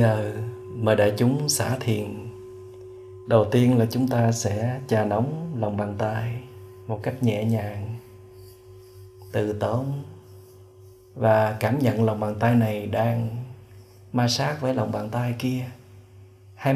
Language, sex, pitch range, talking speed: Vietnamese, male, 105-125 Hz, 145 wpm